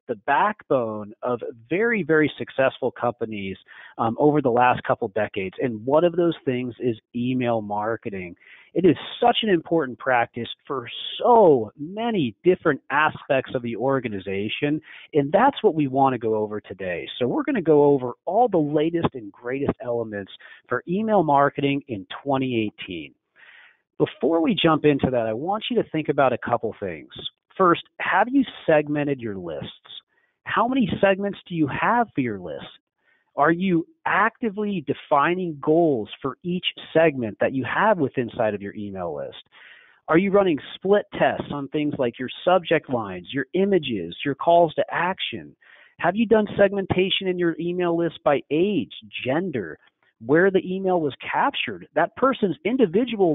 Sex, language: male, English